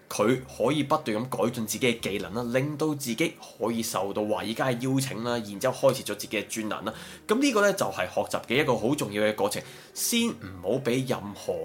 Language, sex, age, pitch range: Chinese, male, 20-39, 105-145 Hz